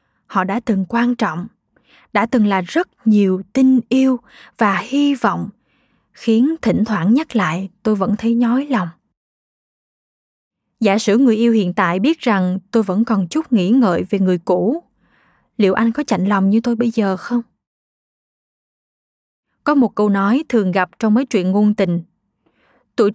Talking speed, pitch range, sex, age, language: 165 wpm, 200-245 Hz, female, 20-39, Vietnamese